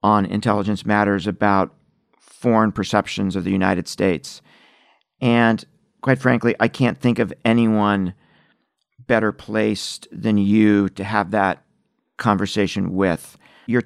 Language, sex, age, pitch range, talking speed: English, male, 50-69, 105-120 Hz, 120 wpm